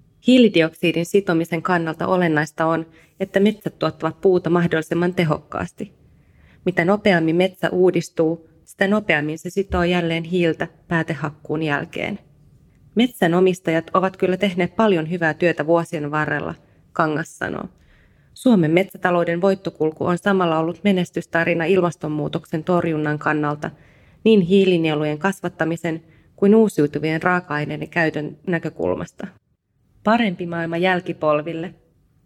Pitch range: 160-190 Hz